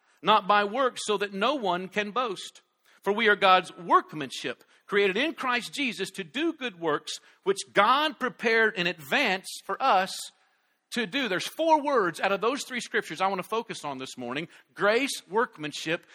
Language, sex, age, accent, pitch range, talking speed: English, male, 50-69, American, 180-260 Hz, 180 wpm